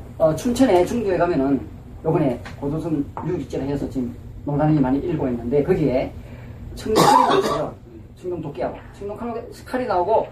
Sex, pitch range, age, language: female, 120-175 Hz, 40-59, Korean